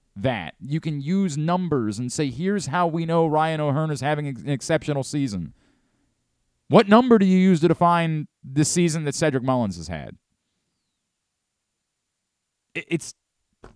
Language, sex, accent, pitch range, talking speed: English, male, American, 100-150 Hz, 145 wpm